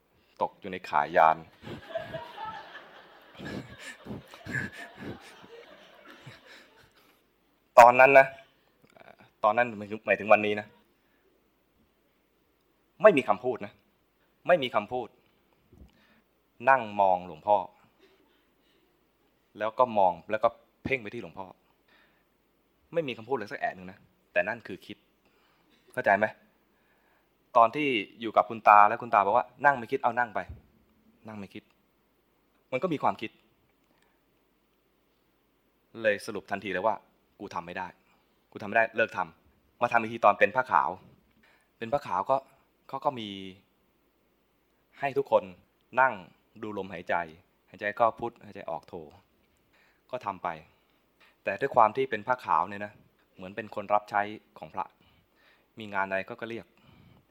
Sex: male